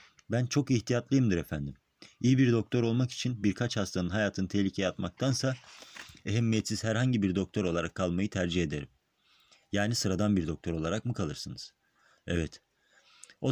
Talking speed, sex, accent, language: 140 wpm, male, native, Turkish